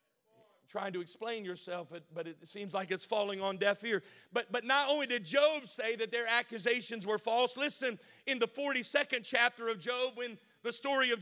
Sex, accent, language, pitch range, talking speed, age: male, American, English, 235-275 Hz, 200 wpm, 50-69